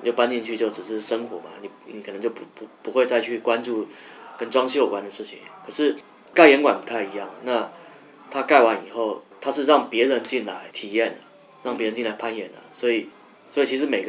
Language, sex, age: Chinese, male, 20-39